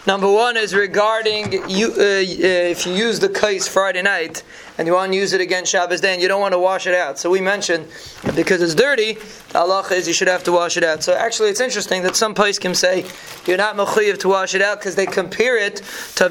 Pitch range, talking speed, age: 180-210 Hz, 260 wpm, 20-39